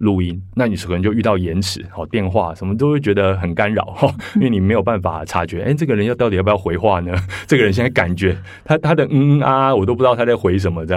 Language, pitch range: Chinese, 85-105 Hz